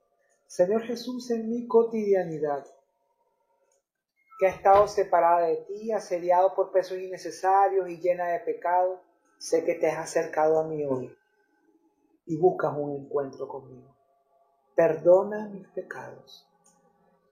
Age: 40-59